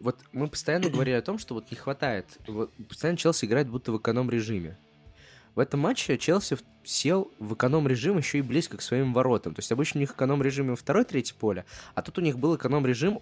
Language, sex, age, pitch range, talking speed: Russian, male, 20-39, 105-140 Hz, 220 wpm